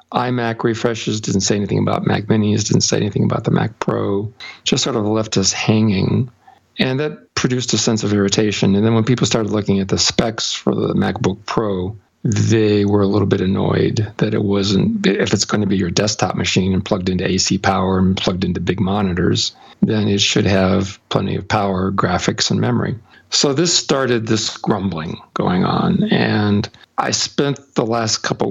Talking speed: 190 wpm